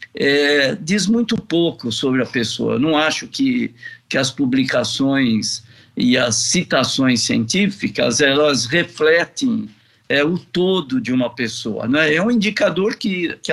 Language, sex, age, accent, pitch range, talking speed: Portuguese, male, 60-79, Brazilian, 130-205 Hz, 135 wpm